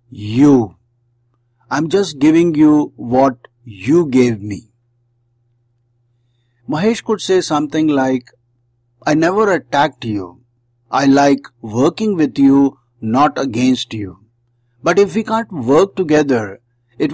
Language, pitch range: English, 120-150 Hz